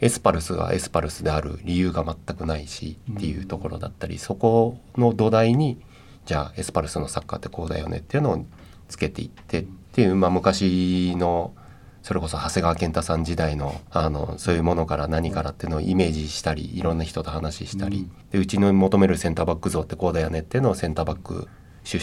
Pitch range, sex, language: 80-100 Hz, male, Japanese